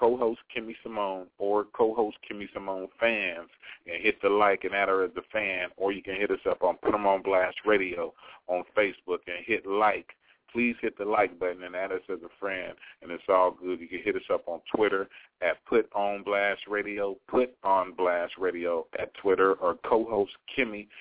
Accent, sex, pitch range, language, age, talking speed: American, male, 90-105 Hz, English, 40-59, 210 wpm